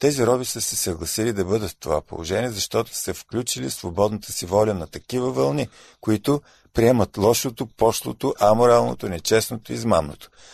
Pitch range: 100-125 Hz